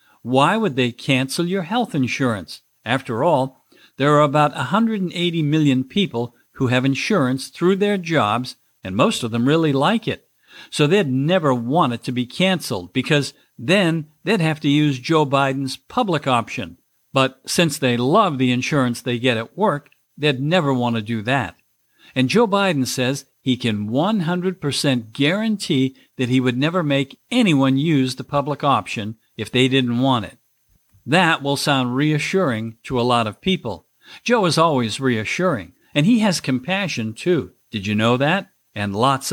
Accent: American